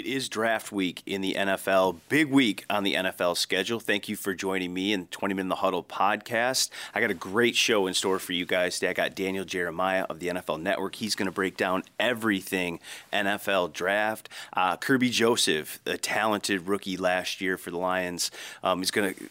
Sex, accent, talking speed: male, American, 210 wpm